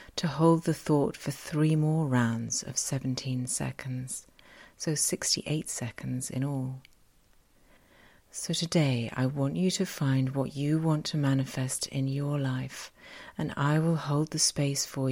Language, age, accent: English, 40-59, British